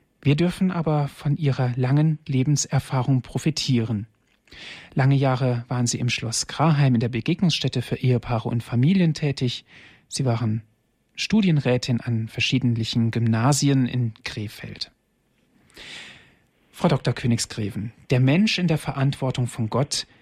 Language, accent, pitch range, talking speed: German, German, 125-155 Hz, 120 wpm